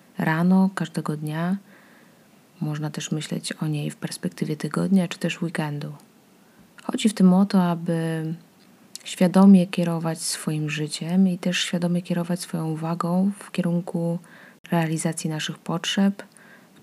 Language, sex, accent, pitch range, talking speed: Polish, female, native, 160-200 Hz, 130 wpm